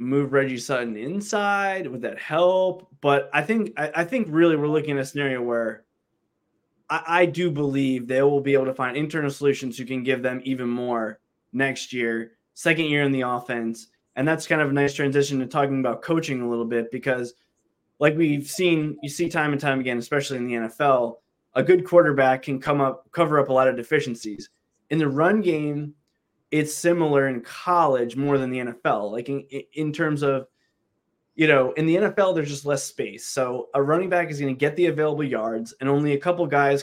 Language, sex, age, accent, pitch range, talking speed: English, male, 20-39, American, 130-160 Hz, 205 wpm